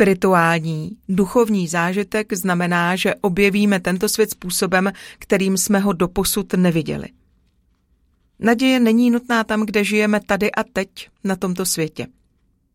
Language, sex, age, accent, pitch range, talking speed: Czech, female, 40-59, native, 175-210 Hz, 120 wpm